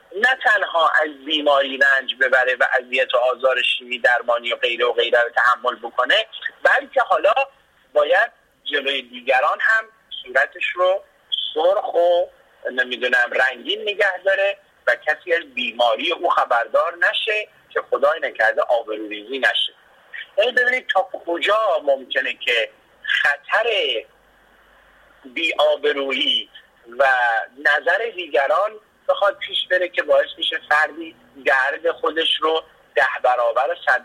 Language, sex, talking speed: Persian, male, 120 wpm